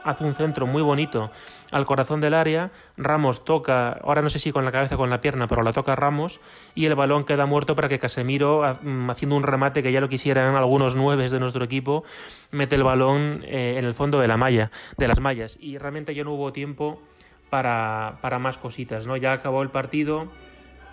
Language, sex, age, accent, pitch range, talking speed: Spanish, male, 20-39, Spanish, 130-150 Hz, 210 wpm